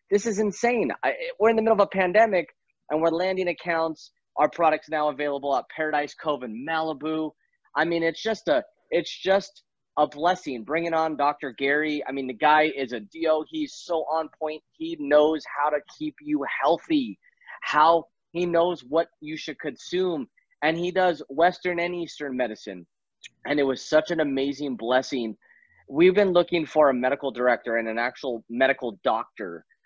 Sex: male